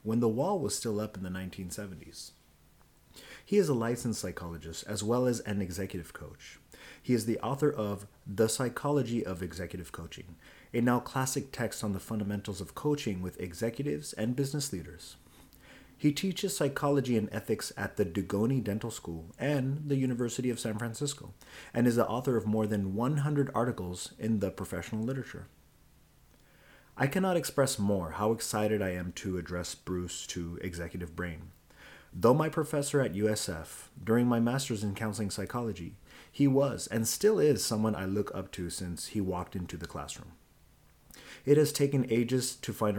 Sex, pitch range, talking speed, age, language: male, 95-125 Hz, 170 wpm, 30-49, English